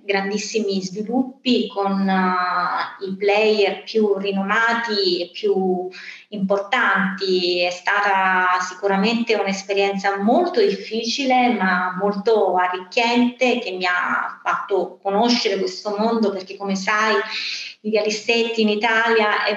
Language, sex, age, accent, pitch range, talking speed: Italian, female, 30-49, native, 195-230 Hz, 105 wpm